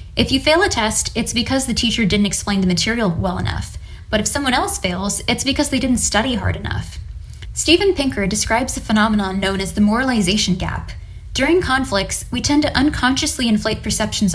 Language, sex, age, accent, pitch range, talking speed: English, female, 10-29, American, 190-265 Hz, 190 wpm